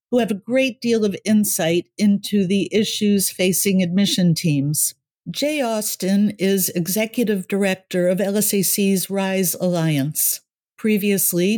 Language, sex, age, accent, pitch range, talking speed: English, female, 50-69, American, 175-210 Hz, 120 wpm